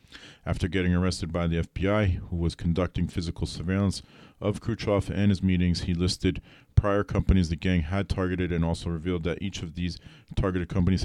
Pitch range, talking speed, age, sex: 85-95 Hz, 180 wpm, 40-59, male